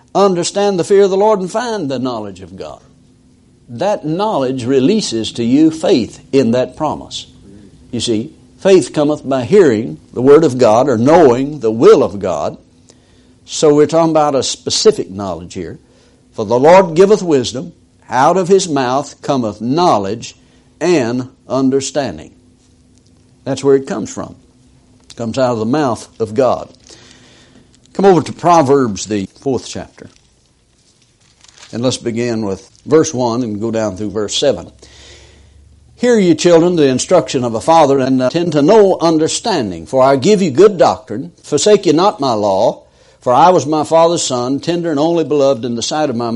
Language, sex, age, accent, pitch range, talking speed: English, male, 60-79, American, 120-175 Hz, 170 wpm